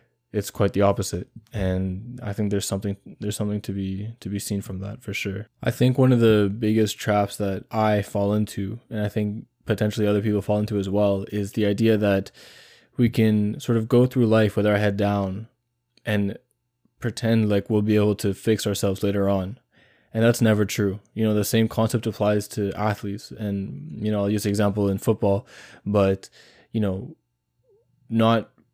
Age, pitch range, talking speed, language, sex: 20-39, 100-115 Hz, 190 wpm, English, male